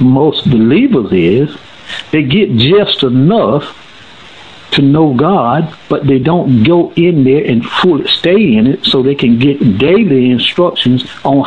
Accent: American